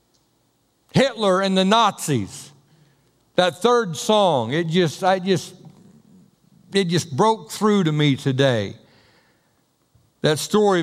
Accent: American